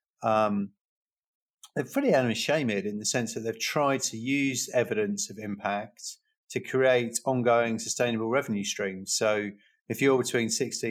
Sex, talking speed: male, 145 wpm